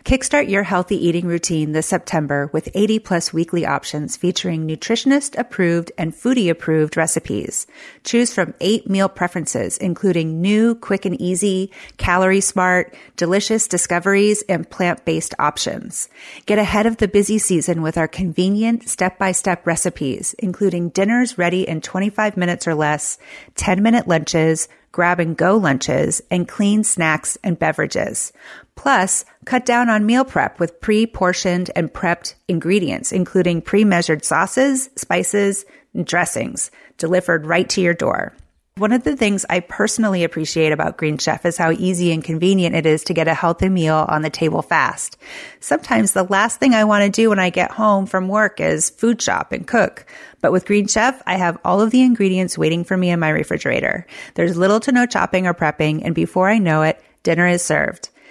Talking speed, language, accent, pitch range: 175 wpm, English, American, 165-210 Hz